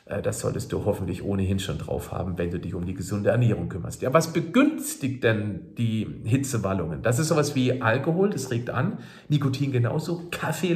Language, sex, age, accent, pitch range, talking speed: German, male, 50-69, German, 125-165 Hz, 185 wpm